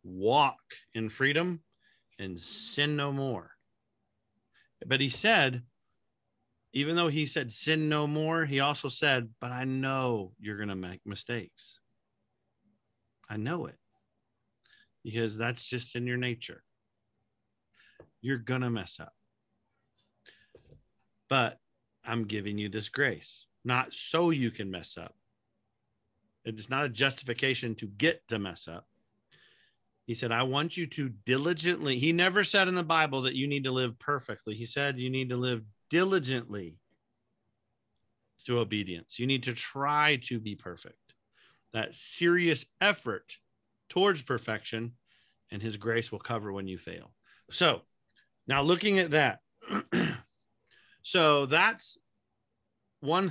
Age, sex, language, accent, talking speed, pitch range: 40-59, male, English, American, 135 wpm, 110-145 Hz